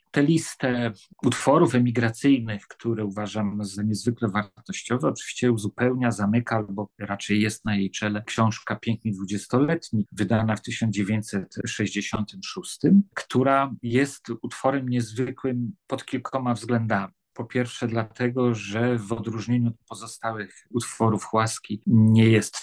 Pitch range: 105-120 Hz